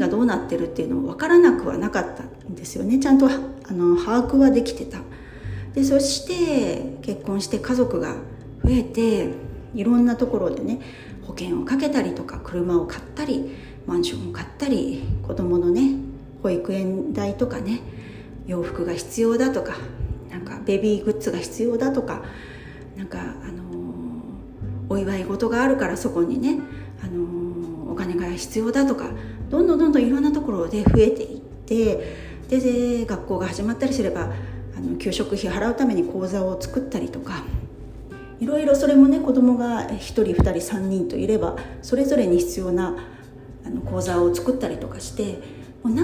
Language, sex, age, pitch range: Japanese, female, 40-59, 175-260 Hz